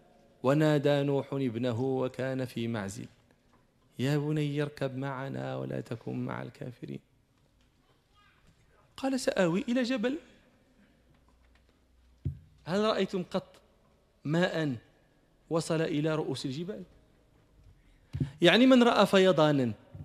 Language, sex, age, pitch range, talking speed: Arabic, male, 40-59, 140-230 Hz, 90 wpm